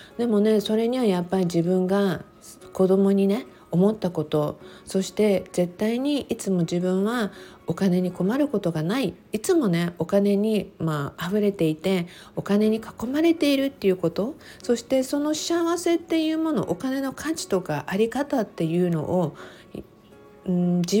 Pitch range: 180-240 Hz